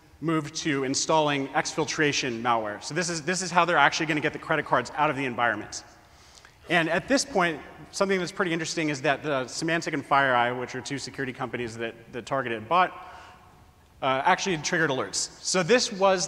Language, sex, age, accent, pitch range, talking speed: English, male, 30-49, American, 125-170 Hz, 195 wpm